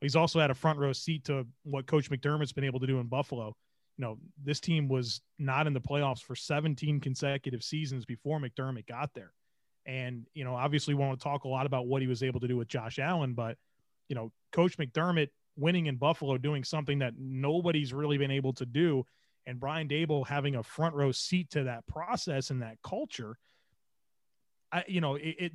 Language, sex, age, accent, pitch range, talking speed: English, male, 30-49, American, 130-165 Hz, 210 wpm